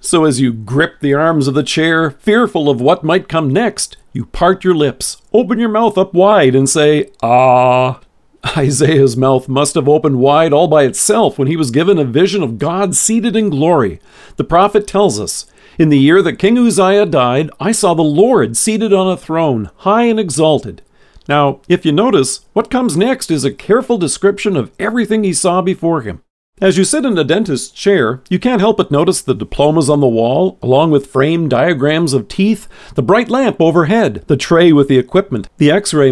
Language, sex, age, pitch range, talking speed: English, male, 50-69, 140-200 Hz, 200 wpm